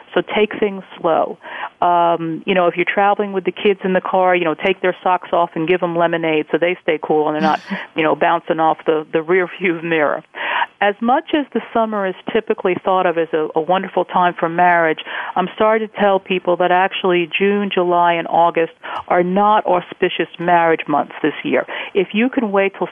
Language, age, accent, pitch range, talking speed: English, 50-69, American, 170-200 Hz, 210 wpm